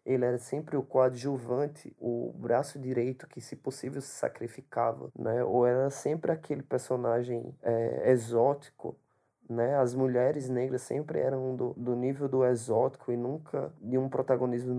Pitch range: 125-145 Hz